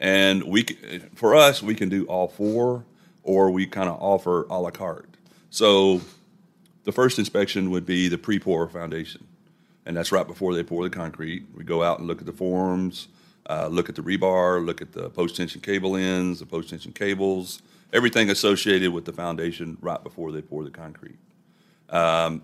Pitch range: 85-95 Hz